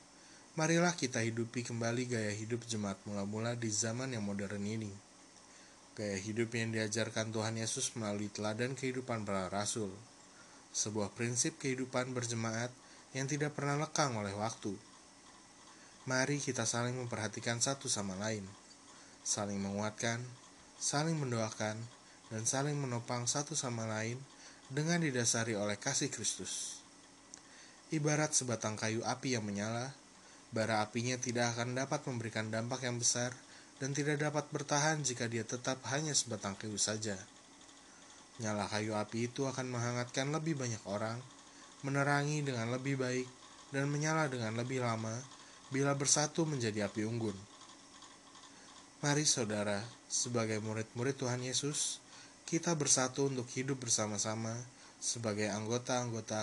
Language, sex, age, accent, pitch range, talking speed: Indonesian, male, 20-39, native, 110-135 Hz, 125 wpm